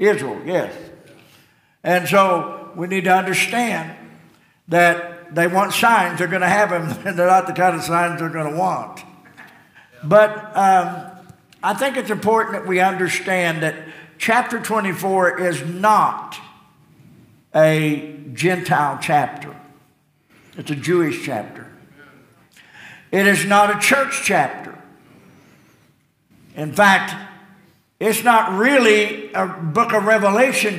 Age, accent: 60-79, American